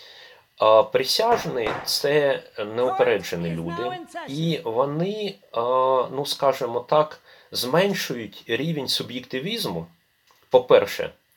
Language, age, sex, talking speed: Ukrainian, 30-49, male, 75 wpm